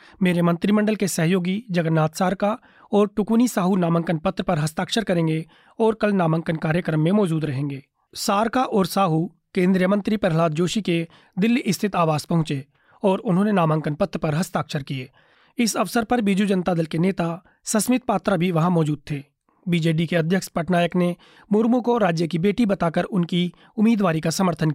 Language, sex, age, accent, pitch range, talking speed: Hindi, male, 30-49, native, 165-200 Hz, 165 wpm